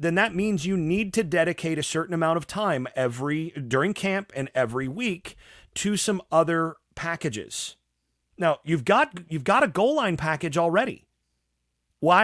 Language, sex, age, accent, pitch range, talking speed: English, male, 40-59, American, 125-190 Hz, 160 wpm